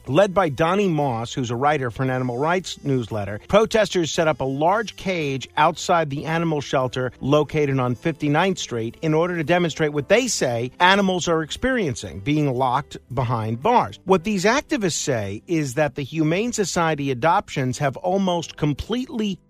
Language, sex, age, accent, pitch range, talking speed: English, male, 50-69, American, 140-190 Hz, 165 wpm